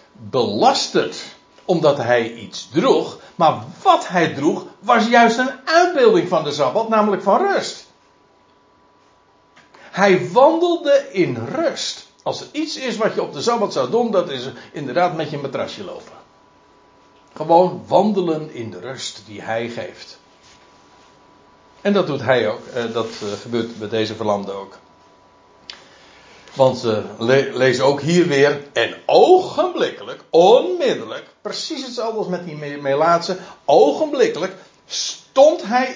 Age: 60-79